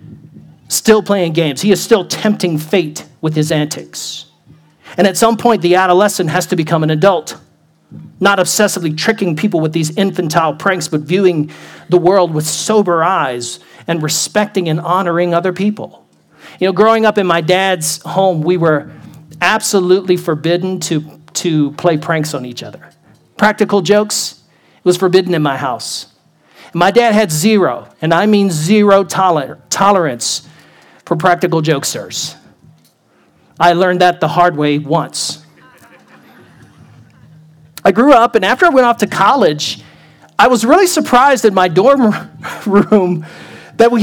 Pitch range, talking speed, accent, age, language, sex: 155-200 Hz, 150 wpm, American, 40-59, English, male